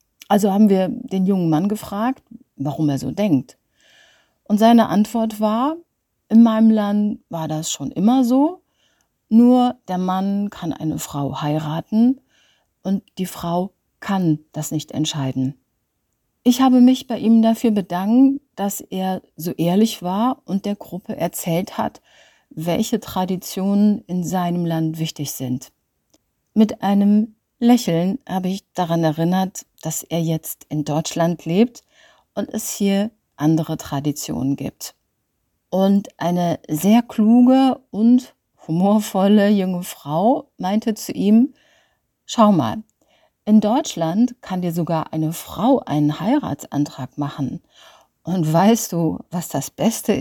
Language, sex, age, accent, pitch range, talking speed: German, female, 50-69, German, 160-225 Hz, 130 wpm